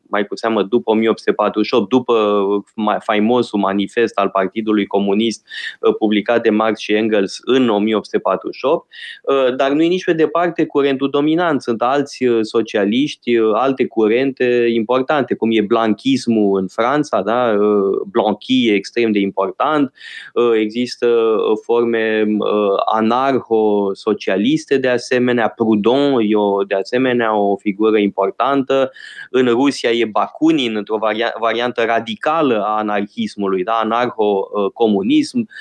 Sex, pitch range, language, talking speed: male, 105-135 Hz, Romanian, 110 wpm